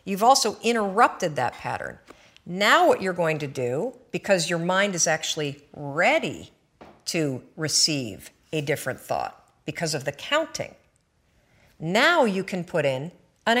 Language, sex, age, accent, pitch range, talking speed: English, female, 50-69, American, 155-205 Hz, 140 wpm